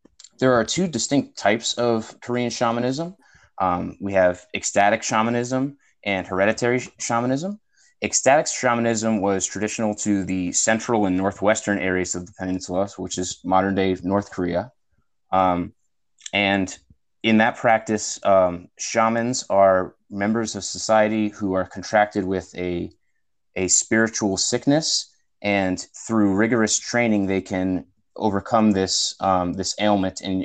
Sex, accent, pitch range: male, American, 95-110 Hz